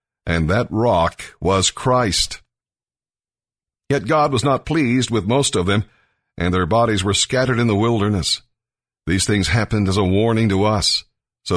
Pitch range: 95-125 Hz